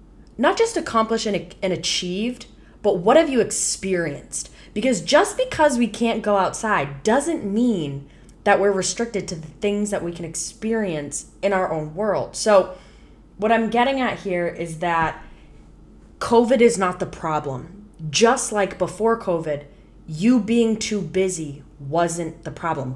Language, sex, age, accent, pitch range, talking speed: English, female, 10-29, American, 160-215 Hz, 150 wpm